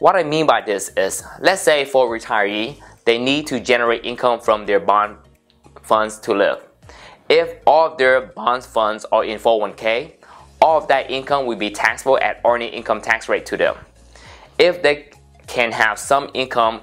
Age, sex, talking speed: 20-39, male, 185 wpm